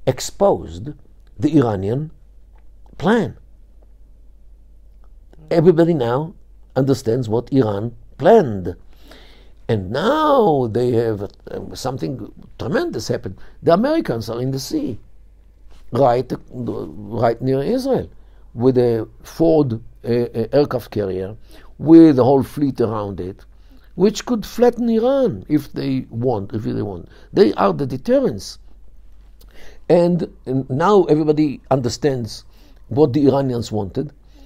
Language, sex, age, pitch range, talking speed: English, male, 60-79, 110-160 Hz, 110 wpm